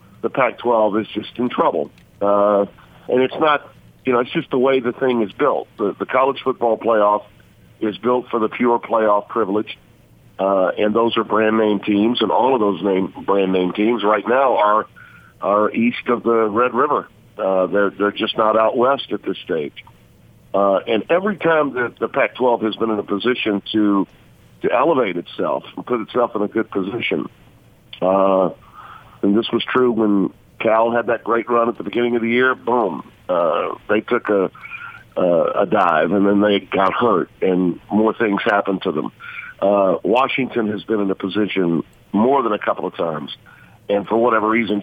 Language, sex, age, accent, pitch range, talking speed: English, male, 50-69, American, 100-120 Hz, 185 wpm